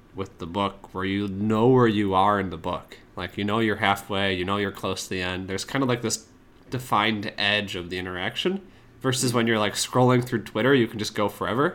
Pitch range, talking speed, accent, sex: 95-115 Hz, 235 wpm, American, male